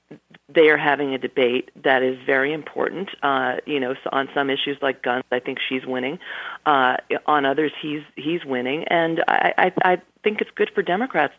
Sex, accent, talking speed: female, American, 190 wpm